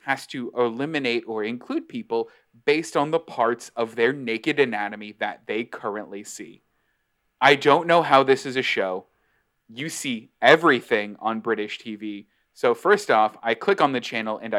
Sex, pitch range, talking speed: male, 120-150 Hz, 170 wpm